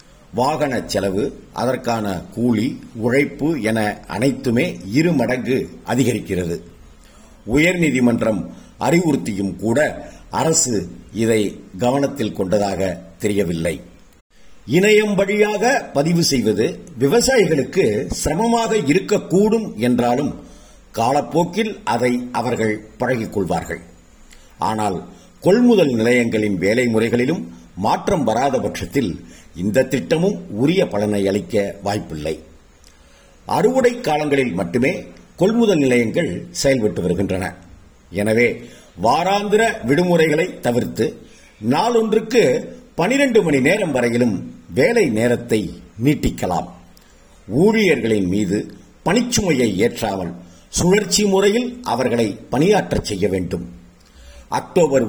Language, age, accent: Tamil, 50-69, native